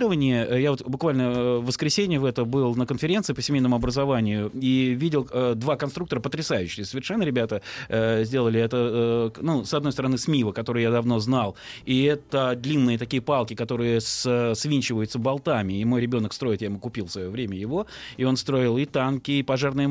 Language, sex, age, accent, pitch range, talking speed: Russian, male, 20-39, native, 120-145 Hz, 185 wpm